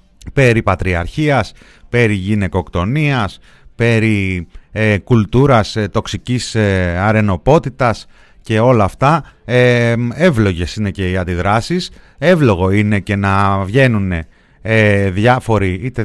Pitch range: 95-120 Hz